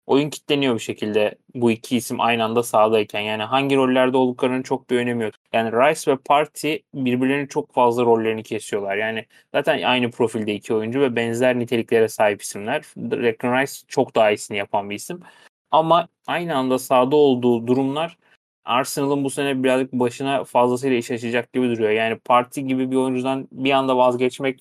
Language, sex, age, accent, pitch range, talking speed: Turkish, male, 30-49, native, 115-135 Hz, 170 wpm